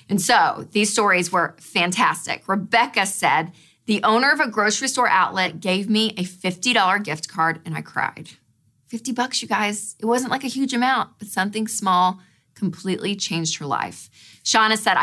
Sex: female